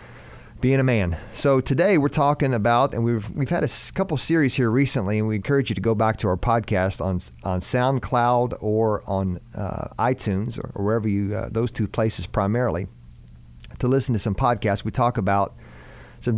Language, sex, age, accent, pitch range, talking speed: English, male, 40-59, American, 100-125 Hz, 190 wpm